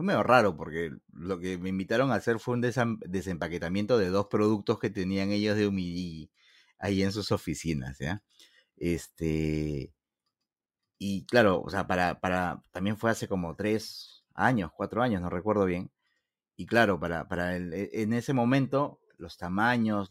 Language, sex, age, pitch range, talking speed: Spanish, male, 30-49, 90-115 Hz, 160 wpm